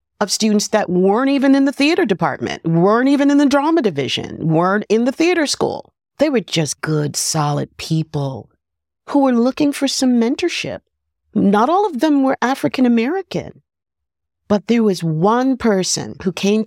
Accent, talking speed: American, 165 wpm